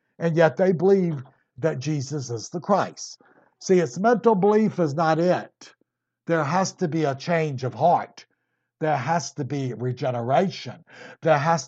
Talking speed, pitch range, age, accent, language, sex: 160 wpm, 135-175 Hz, 60-79, American, English, male